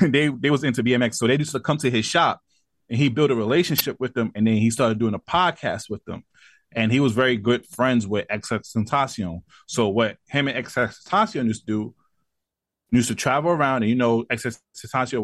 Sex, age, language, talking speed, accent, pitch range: male, 20-39, English, 210 wpm, American, 110-140 Hz